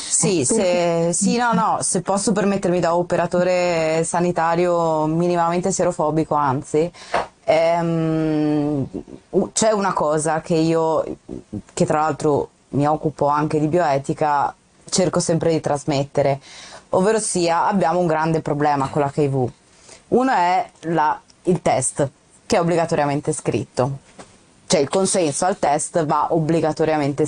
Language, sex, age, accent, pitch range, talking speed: Italian, female, 20-39, native, 150-180 Hz, 115 wpm